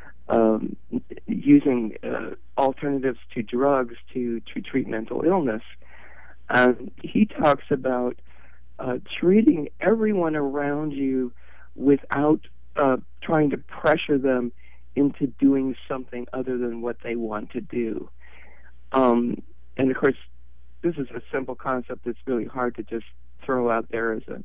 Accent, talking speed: American, 135 wpm